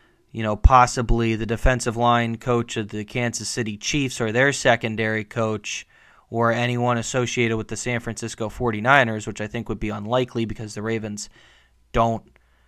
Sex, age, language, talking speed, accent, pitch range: male, 20-39, English, 160 wpm, American, 110-130 Hz